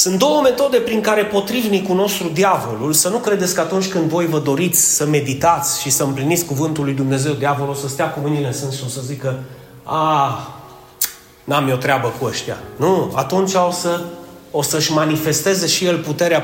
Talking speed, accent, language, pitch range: 195 wpm, native, Romanian, 150-210 Hz